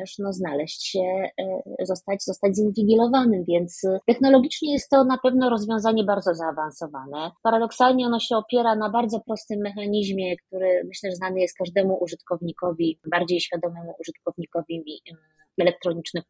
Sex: female